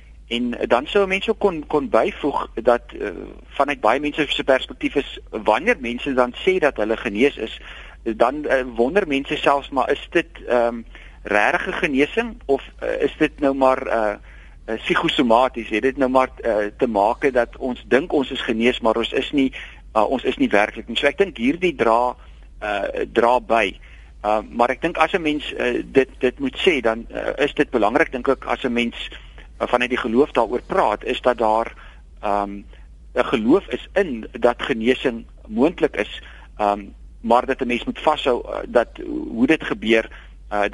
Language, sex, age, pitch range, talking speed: French, male, 50-69, 110-145 Hz, 180 wpm